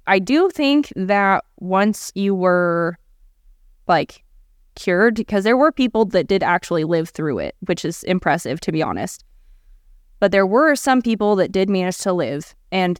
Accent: American